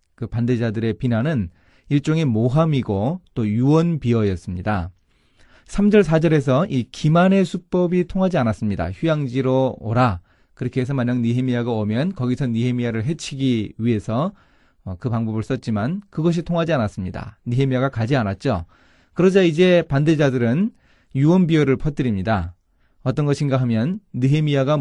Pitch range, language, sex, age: 110-155 Hz, Korean, male, 30-49